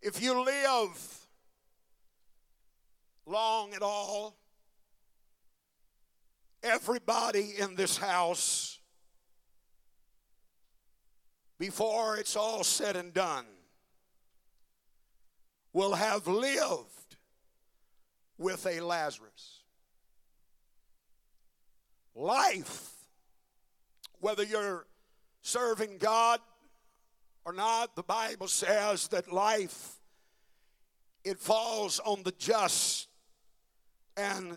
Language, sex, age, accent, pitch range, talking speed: English, male, 60-79, American, 175-230 Hz, 70 wpm